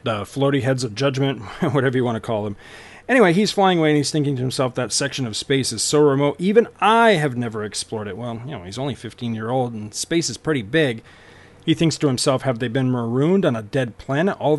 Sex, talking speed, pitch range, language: male, 245 wpm, 115-140 Hz, English